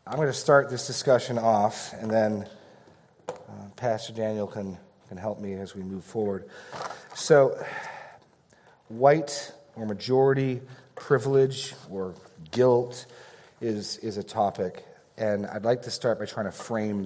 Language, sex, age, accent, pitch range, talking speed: English, male, 30-49, American, 100-120 Hz, 140 wpm